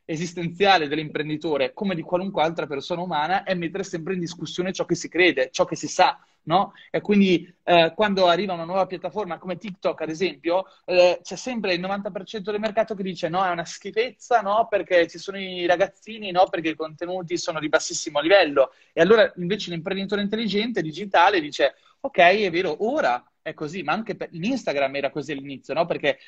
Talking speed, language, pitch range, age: 190 wpm, Italian, 165-200 Hz, 20-39